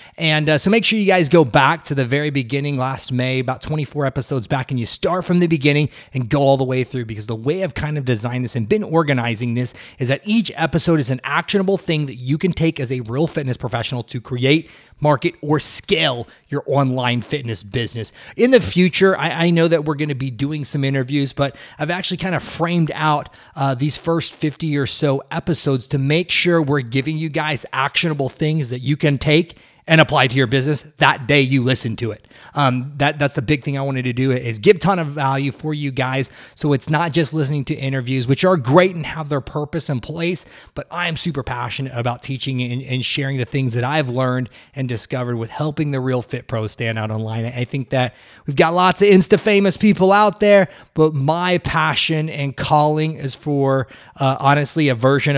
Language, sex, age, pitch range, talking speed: English, male, 30-49, 130-160 Hz, 220 wpm